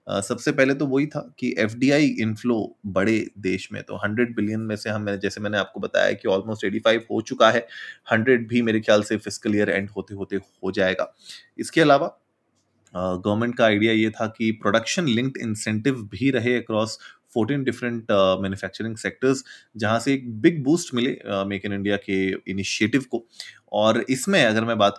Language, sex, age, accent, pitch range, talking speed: Hindi, male, 20-39, native, 100-125 Hz, 185 wpm